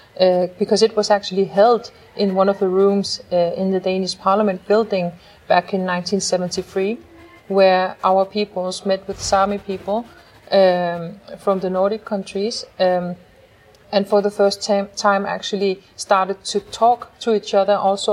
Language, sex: English, female